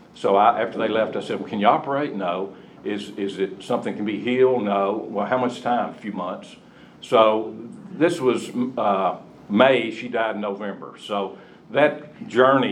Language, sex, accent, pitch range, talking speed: English, male, American, 100-120 Hz, 180 wpm